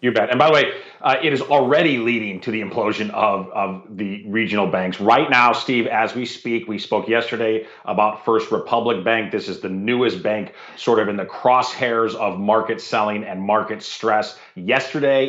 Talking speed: 190 wpm